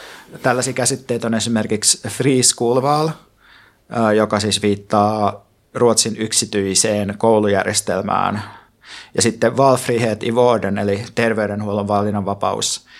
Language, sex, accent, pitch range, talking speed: Finnish, male, native, 110-125 Hz, 95 wpm